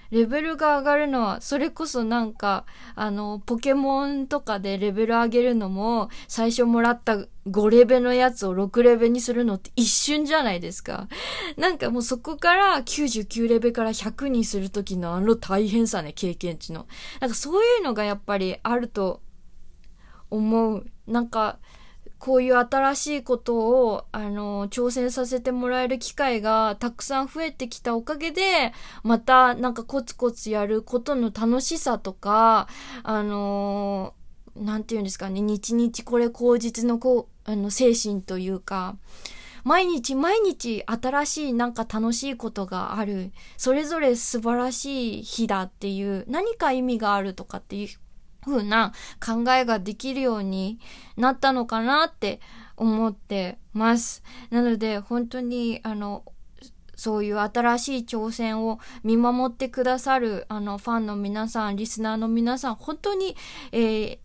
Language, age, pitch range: Japanese, 20-39, 210-255 Hz